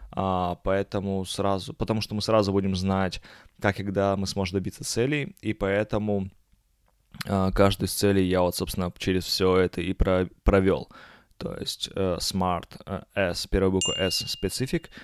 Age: 20-39